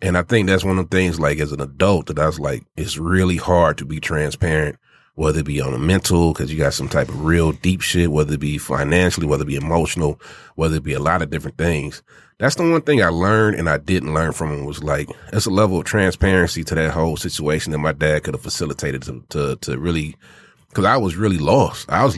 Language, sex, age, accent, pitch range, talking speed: English, male, 30-49, American, 80-105 Hz, 250 wpm